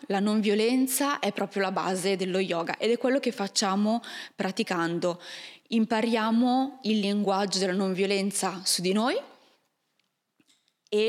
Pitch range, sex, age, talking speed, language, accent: 195-255 Hz, female, 20-39, 135 wpm, Italian, native